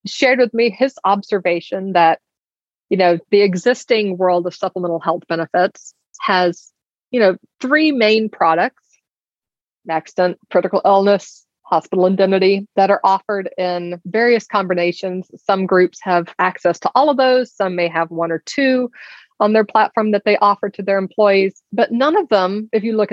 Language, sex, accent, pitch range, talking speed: English, female, American, 180-230 Hz, 160 wpm